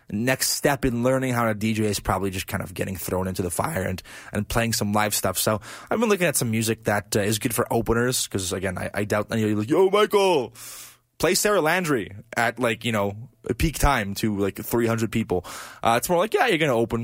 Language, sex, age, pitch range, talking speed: English, male, 20-39, 100-130 Hz, 240 wpm